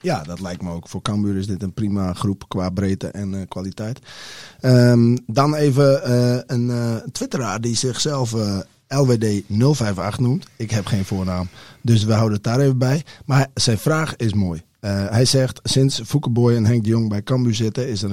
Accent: Dutch